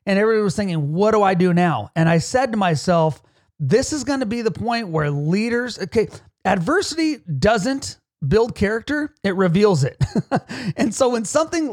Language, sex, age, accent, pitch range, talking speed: English, male, 30-49, American, 160-220 Hz, 175 wpm